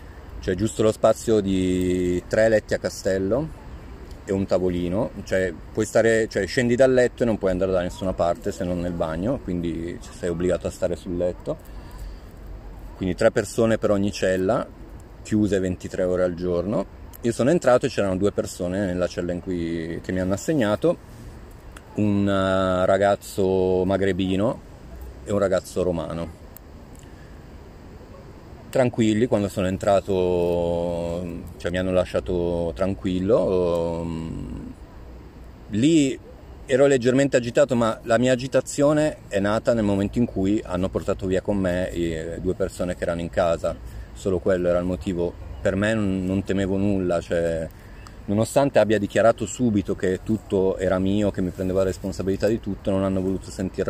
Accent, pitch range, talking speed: native, 90-105 Hz, 150 wpm